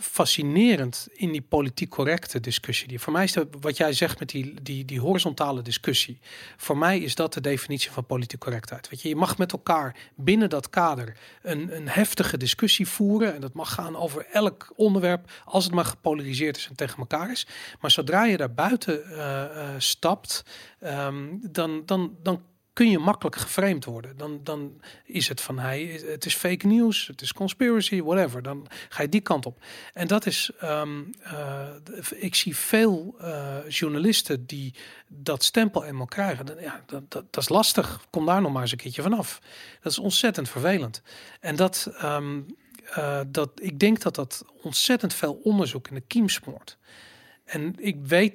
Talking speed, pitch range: 175 wpm, 140-185 Hz